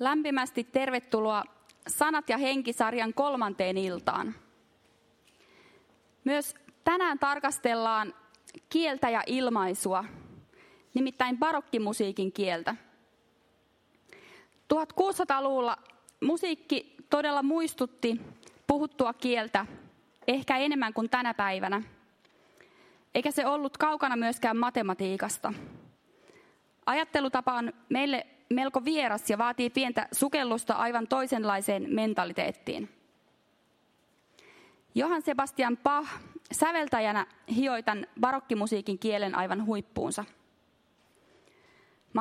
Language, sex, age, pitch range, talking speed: Finnish, female, 20-39, 215-280 Hz, 80 wpm